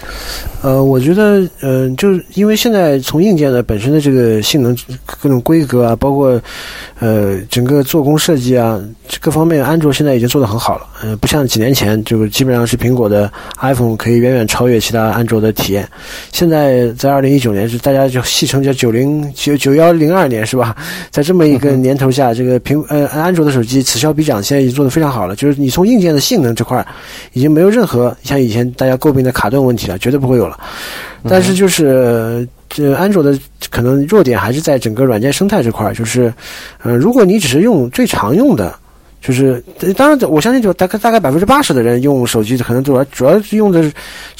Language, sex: Chinese, male